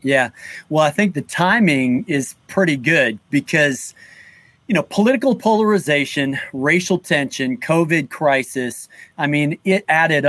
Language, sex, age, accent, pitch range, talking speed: English, male, 40-59, American, 140-195 Hz, 130 wpm